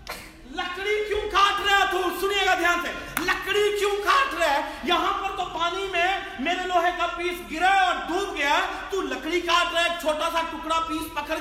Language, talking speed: Urdu, 160 wpm